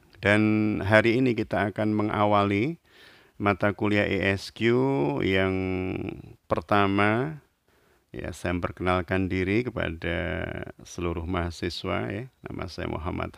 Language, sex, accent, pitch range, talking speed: Indonesian, male, native, 90-105 Hz, 100 wpm